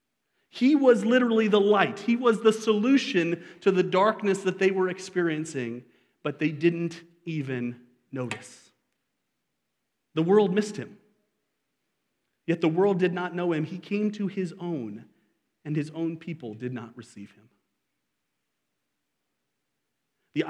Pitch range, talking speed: 135-180 Hz, 135 wpm